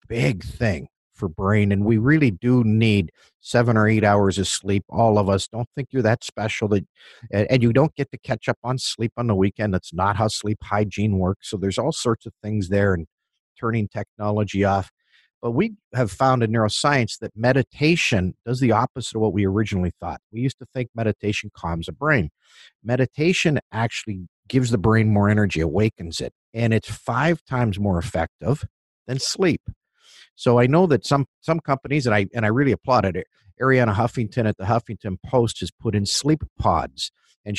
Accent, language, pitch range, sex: American, English, 100-125 Hz, male